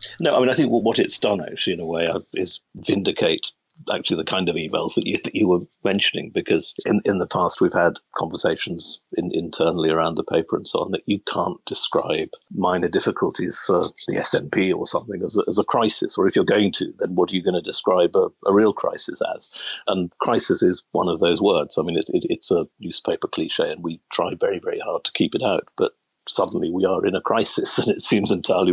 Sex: male